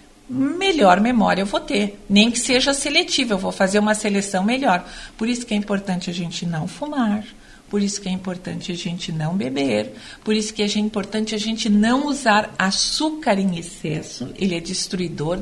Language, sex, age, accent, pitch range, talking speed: Portuguese, female, 50-69, Brazilian, 185-235 Hz, 185 wpm